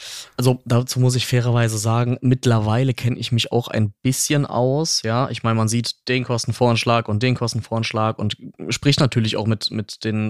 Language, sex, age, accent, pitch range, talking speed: German, male, 20-39, German, 115-135 Hz, 180 wpm